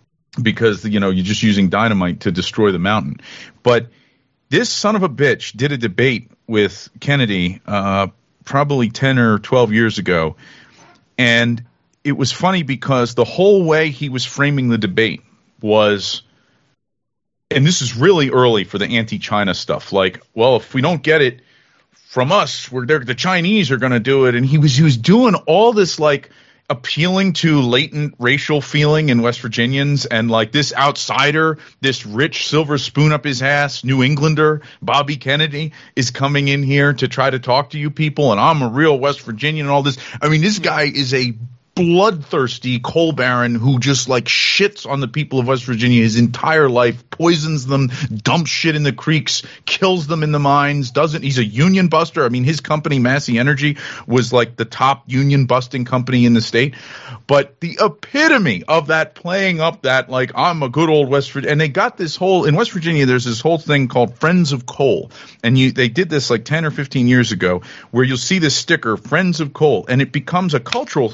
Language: English